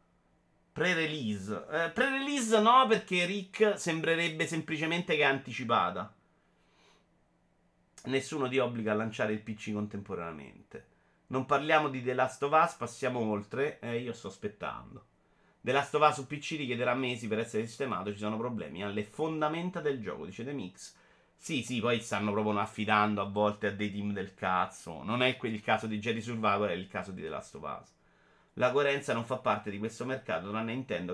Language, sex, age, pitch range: Italian, male, 30-49, 105-135 Hz